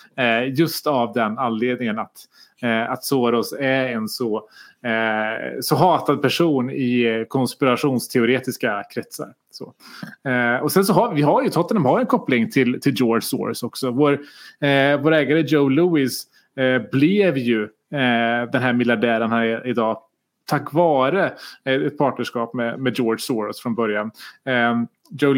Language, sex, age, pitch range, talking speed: Swedish, male, 30-49, 125-150 Hz, 130 wpm